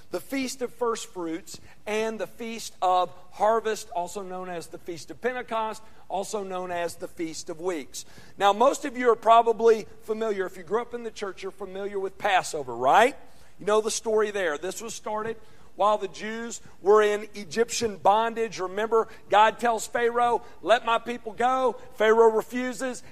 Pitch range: 195-245 Hz